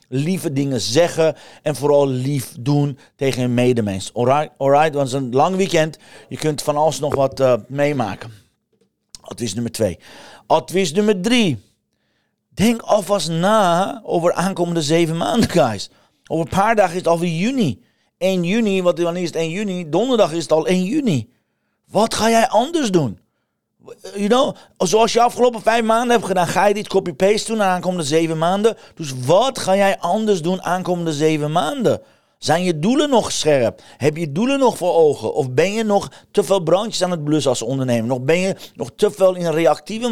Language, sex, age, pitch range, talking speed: Dutch, male, 40-59, 140-195 Hz, 185 wpm